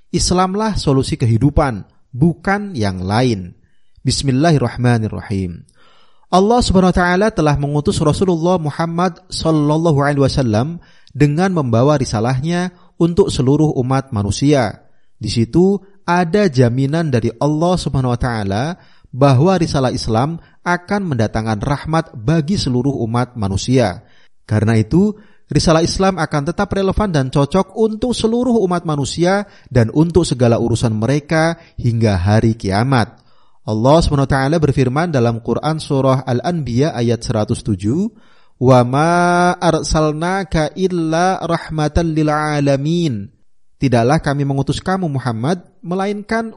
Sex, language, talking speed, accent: male, Indonesian, 110 wpm, native